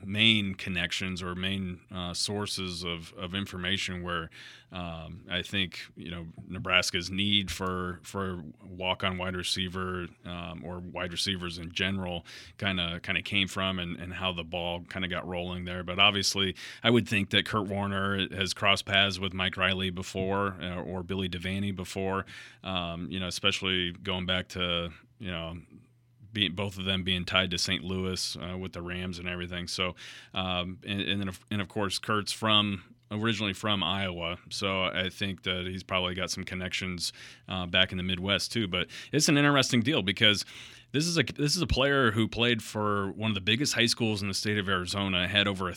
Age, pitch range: 30-49, 90-105 Hz